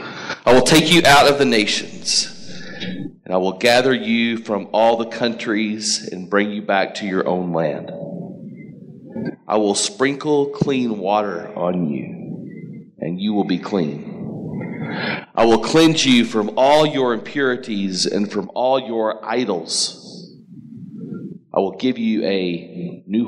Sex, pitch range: male, 100-140 Hz